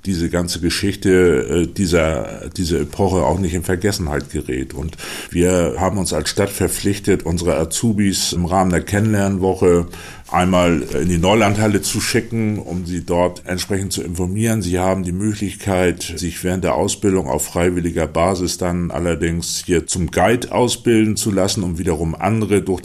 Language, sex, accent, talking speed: German, male, German, 155 wpm